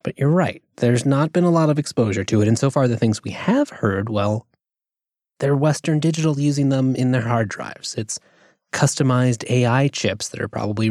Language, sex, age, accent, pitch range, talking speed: English, male, 20-39, American, 115-150 Hz, 205 wpm